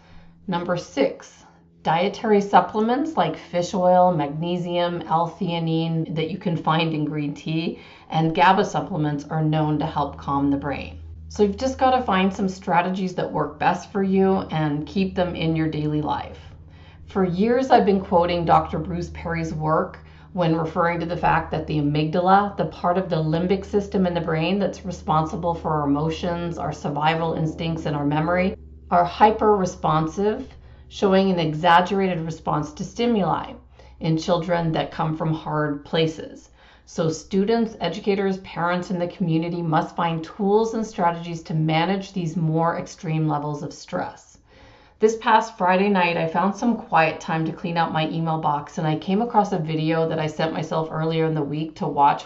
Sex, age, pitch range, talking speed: female, 40-59, 155-185 Hz, 170 wpm